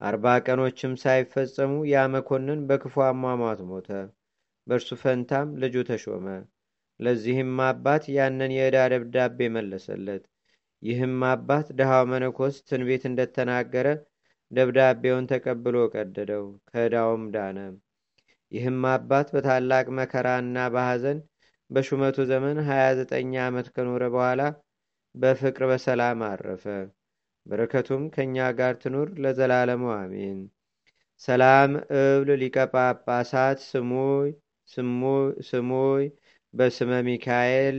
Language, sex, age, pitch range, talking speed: Amharic, male, 30-49, 125-135 Hz, 85 wpm